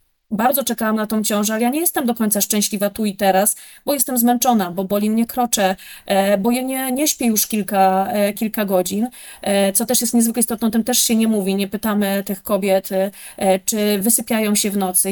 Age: 30-49